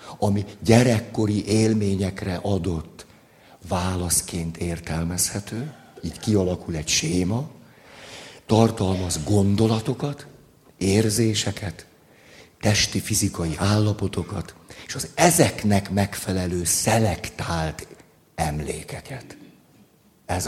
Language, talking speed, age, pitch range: Hungarian, 65 wpm, 60-79, 90-110 Hz